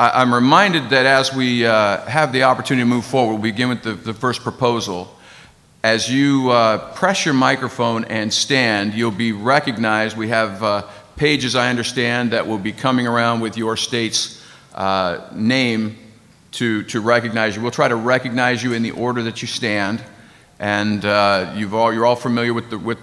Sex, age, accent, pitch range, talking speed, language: male, 50-69, American, 110-130 Hz, 185 wpm, English